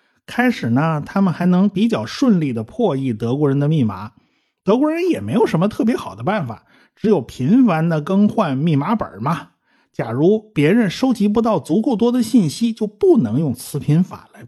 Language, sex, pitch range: Chinese, male, 140-225 Hz